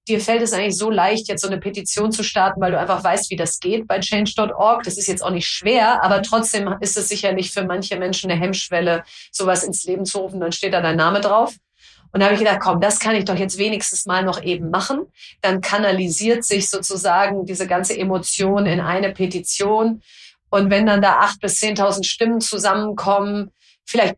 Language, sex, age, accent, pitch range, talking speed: German, female, 30-49, German, 190-220 Hz, 210 wpm